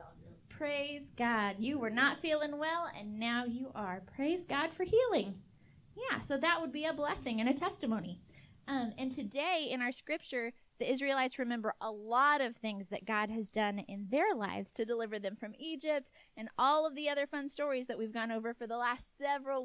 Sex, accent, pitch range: female, American, 230-305 Hz